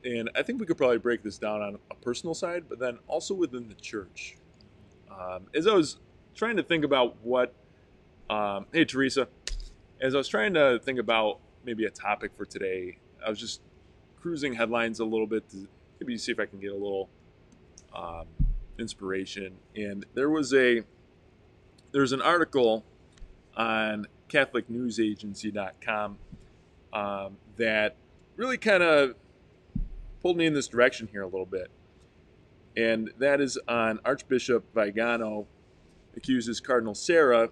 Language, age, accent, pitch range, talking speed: English, 20-39, American, 95-125 Hz, 150 wpm